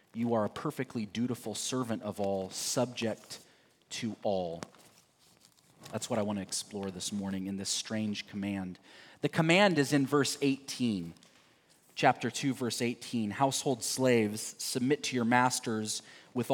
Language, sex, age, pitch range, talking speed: English, male, 30-49, 115-160 Hz, 145 wpm